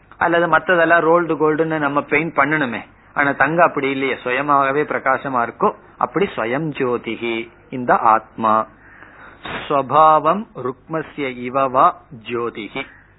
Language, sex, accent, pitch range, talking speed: Tamil, male, native, 120-155 Hz, 75 wpm